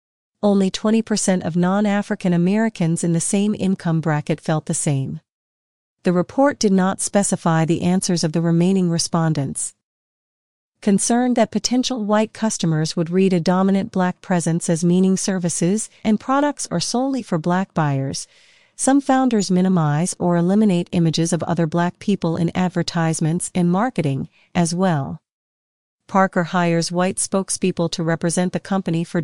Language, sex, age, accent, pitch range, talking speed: English, female, 40-59, American, 170-205 Hz, 145 wpm